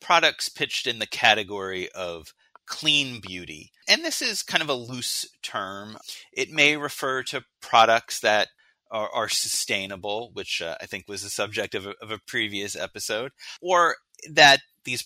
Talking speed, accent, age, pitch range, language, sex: 160 wpm, American, 30-49, 100-130 Hz, English, male